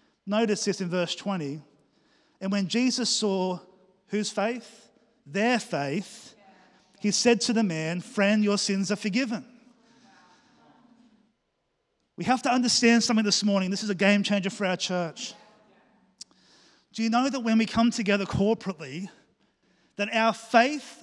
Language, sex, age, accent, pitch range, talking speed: English, male, 30-49, Australian, 205-240 Hz, 145 wpm